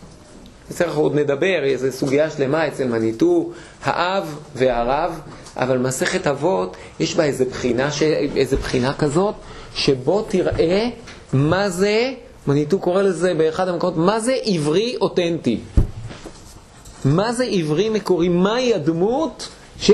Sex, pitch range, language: male, 160-230 Hz, Hebrew